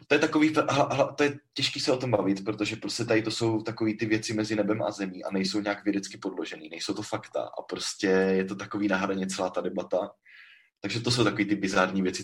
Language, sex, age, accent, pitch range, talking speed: Czech, male, 20-39, native, 95-110 Hz, 225 wpm